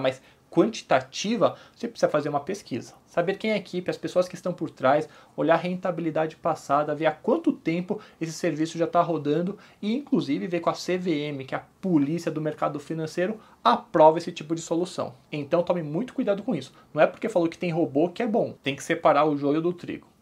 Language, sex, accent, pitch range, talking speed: Portuguese, male, Brazilian, 145-175 Hz, 215 wpm